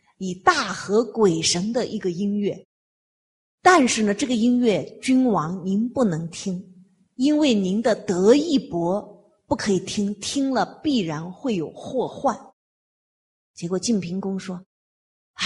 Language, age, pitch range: Chinese, 30-49, 185-245 Hz